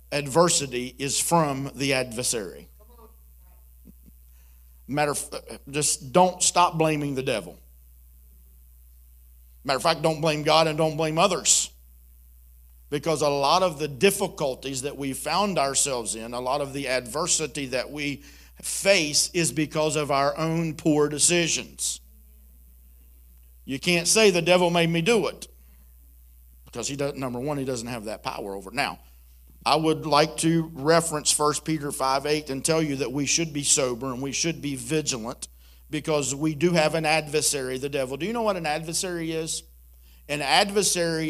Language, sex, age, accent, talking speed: English, male, 50-69, American, 160 wpm